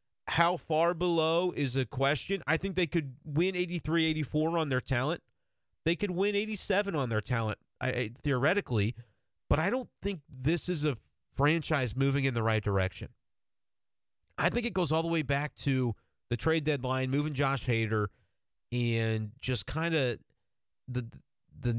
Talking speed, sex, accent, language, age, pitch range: 155 wpm, male, American, English, 30-49, 125-165 Hz